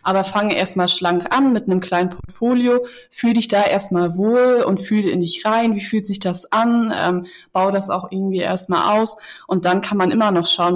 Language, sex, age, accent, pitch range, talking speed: German, female, 20-39, German, 175-200 Hz, 210 wpm